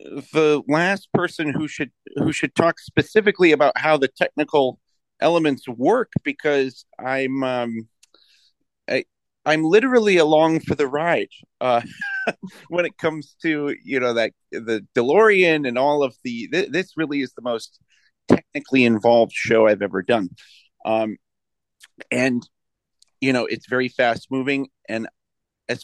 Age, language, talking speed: 40-59, English, 135 wpm